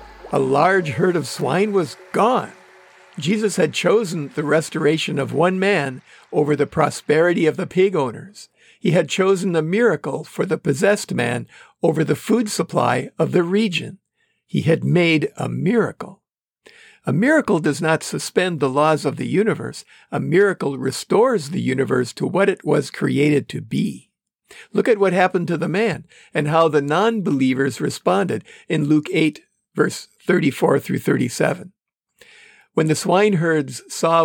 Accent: American